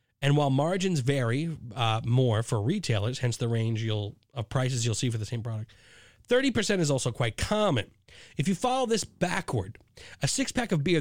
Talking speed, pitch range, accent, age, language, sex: 180 wpm, 115-165 Hz, American, 30-49, English, male